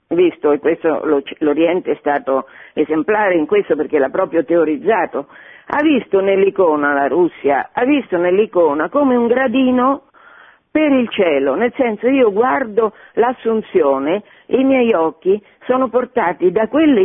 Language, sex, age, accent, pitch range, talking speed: Italian, female, 50-69, native, 170-270 Hz, 135 wpm